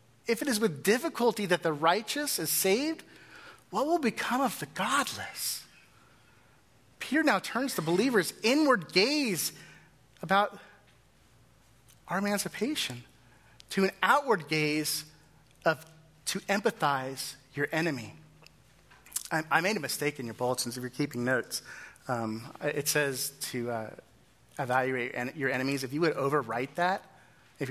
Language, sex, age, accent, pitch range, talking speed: English, male, 30-49, American, 135-200 Hz, 130 wpm